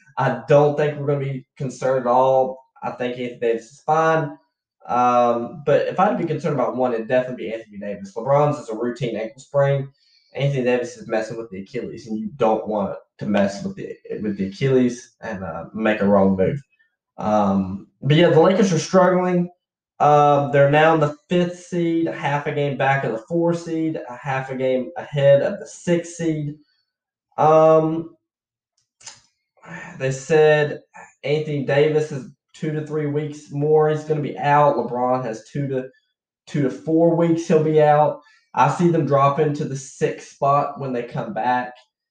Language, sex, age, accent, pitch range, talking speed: English, male, 10-29, American, 125-160 Hz, 185 wpm